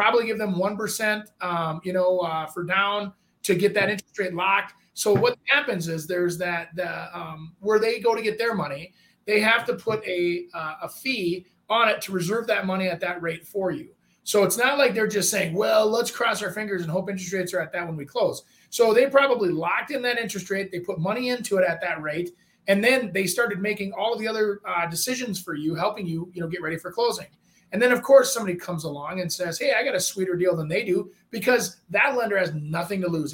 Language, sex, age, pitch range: English, male, 20-39, 180-230 Hz